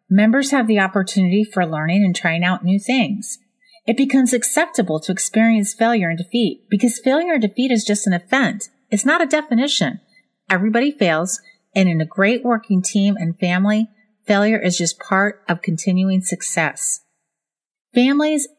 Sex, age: female, 30-49